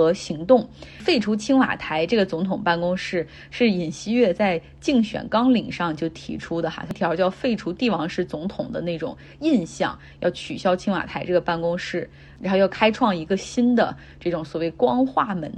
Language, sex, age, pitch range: Chinese, female, 20-39, 170-210 Hz